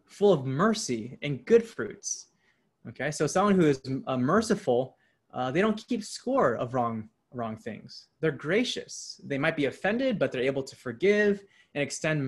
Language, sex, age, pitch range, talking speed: English, male, 20-39, 125-190 Hz, 170 wpm